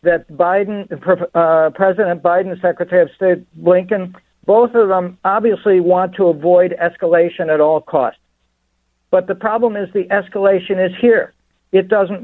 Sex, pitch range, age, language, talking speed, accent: male, 165-190 Hz, 60-79, English, 145 wpm, American